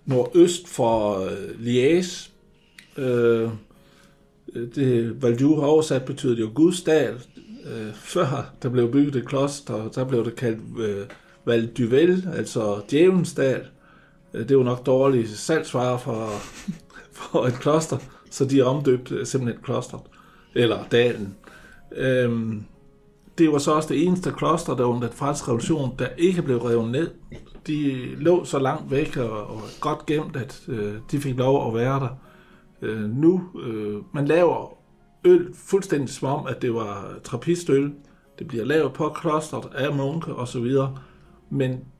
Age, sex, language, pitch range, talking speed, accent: 60-79, male, Danish, 115-150 Hz, 145 wpm, native